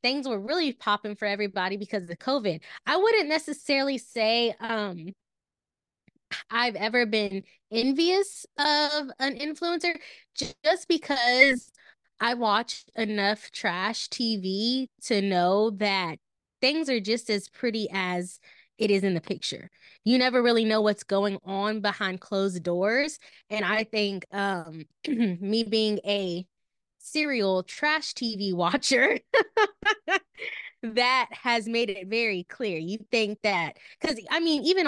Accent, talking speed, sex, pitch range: American, 130 wpm, female, 190-255 Hz